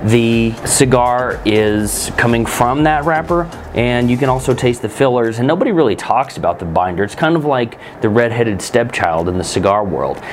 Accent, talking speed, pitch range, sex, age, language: American, 185 wpm, 105-135 Hz, male, 30-49, English